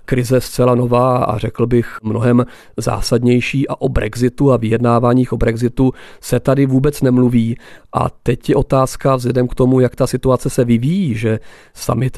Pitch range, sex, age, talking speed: 120-130 Hz, male, 40-59, 165 wpm